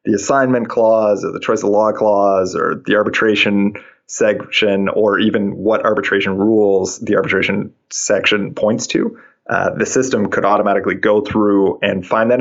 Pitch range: 100-130 Hz